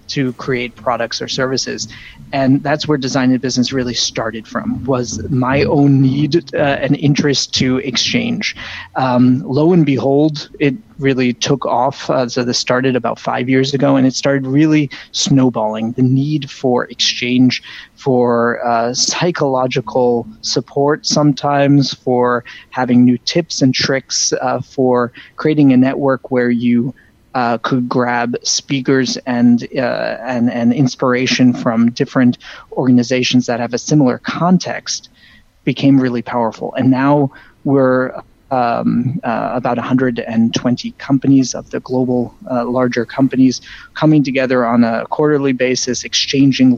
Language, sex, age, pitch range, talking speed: English, male, 20-39, 120-140 Hz, 135 wpm